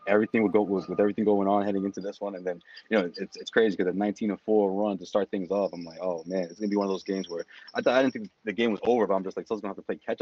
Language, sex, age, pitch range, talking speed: English, male, 20-39, 95-115 Hz, 340 wpm